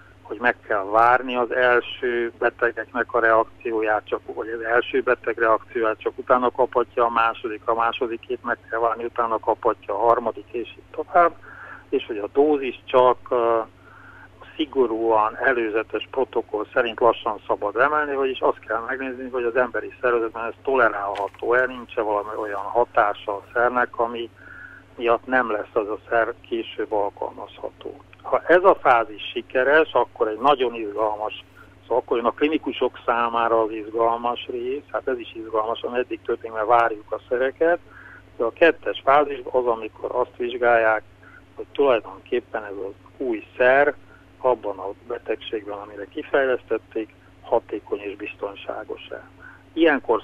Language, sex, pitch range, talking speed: Hungarian, male, 110-140 Hz, 145 wpm